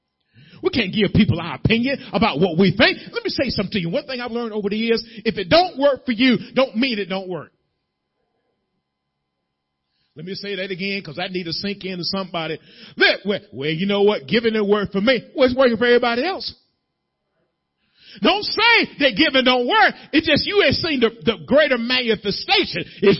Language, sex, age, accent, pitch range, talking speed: English, male, 40-59, American, 165-275 Hz, 200 wpm